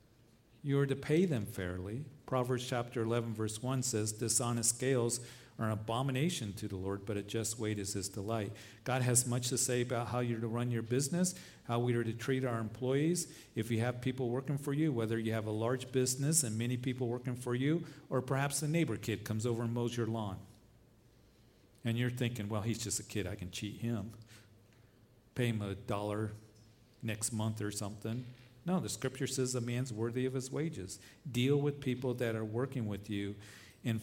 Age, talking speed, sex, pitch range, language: 50-69, 205 wpm, male, 110-125 Hz, English